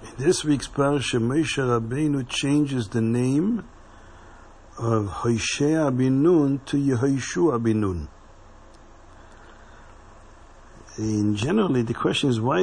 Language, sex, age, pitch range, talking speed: English, male, 60-79, 110-140 Hz, 100 wpm